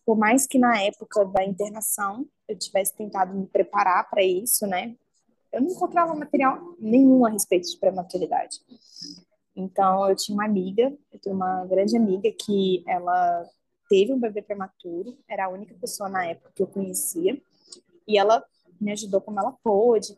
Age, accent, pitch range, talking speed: 20-39, Brazilian, 195-255 Hz, 165 wpm